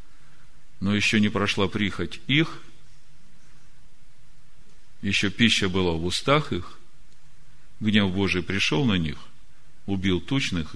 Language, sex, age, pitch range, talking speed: Russian, male, 50-69, 85-105 Hz, 105 wpm